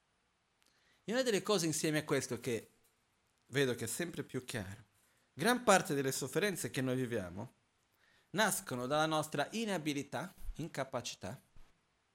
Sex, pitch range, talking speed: male, 115-155 Hz, 130 wpm